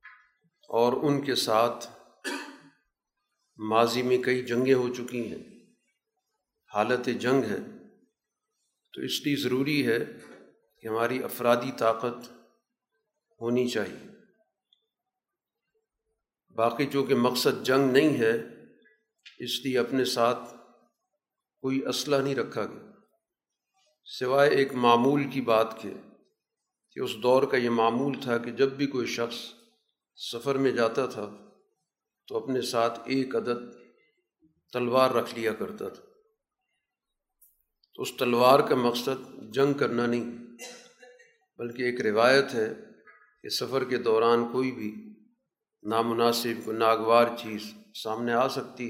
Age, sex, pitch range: 50-69, male, 120-150 Hz